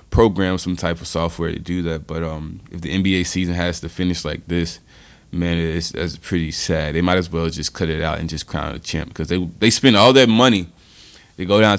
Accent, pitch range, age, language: American, 85-95 Hz, 20-39, English